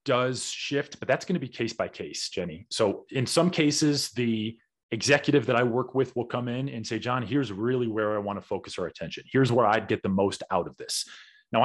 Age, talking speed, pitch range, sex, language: 30-49, 225 wpm, 105-125 Hz, male, English